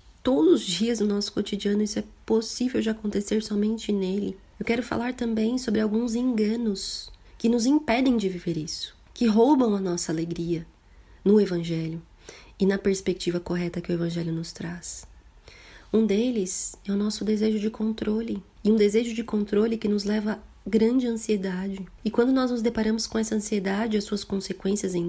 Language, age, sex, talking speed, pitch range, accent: Portuguese, 20-39, female, 175 wpm, 195-235 Hz, Brazilian